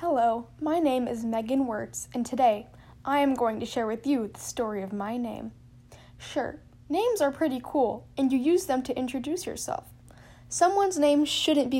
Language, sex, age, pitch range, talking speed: English, female, 10-29, 220-290 Hz, 185 wpm